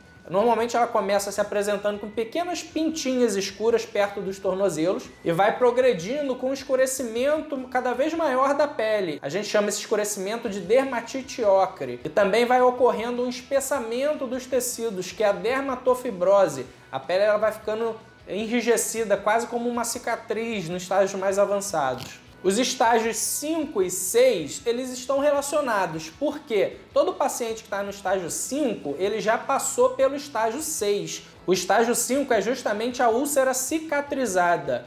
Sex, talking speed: male, 150 wpm